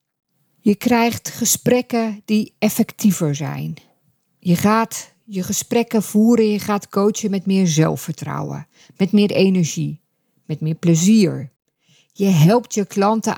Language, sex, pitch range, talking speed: Dutch, female, 165-215 Hz, 120 wpm